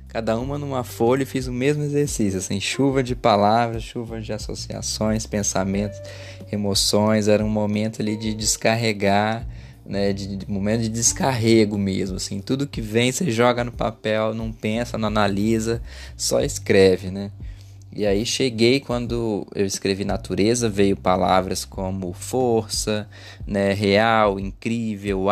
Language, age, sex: Portuguese, 20-39, male